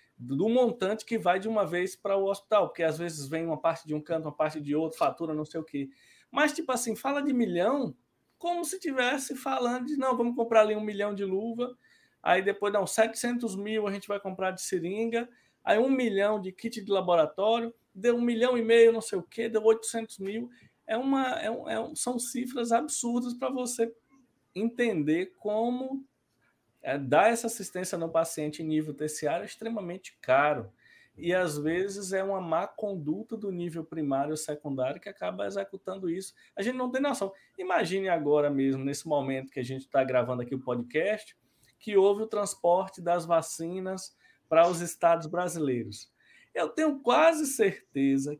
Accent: Brazilian